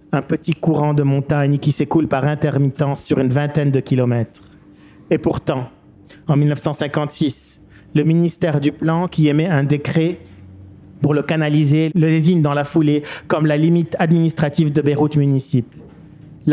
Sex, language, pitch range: male, English, 140-160 Hz